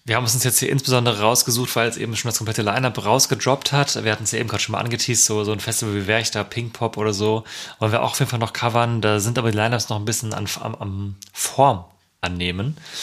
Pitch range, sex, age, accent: 105-135 Hz, male, 30-49, German